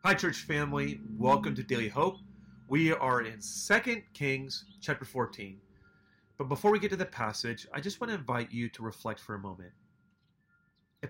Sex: male